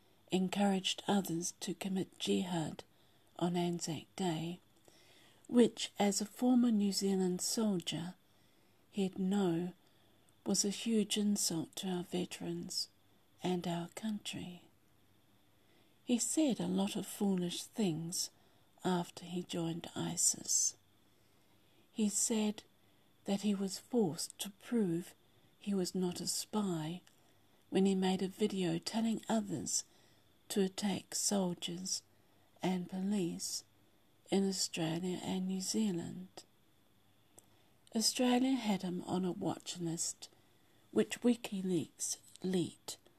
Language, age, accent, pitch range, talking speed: English, 50-69, British, 160-200 Hz, 110 wpm